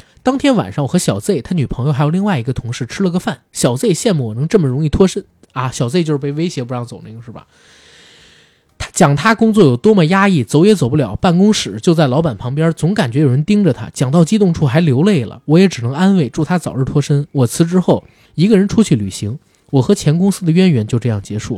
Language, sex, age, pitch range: Chinese, male, 20-39, 130-180 Hz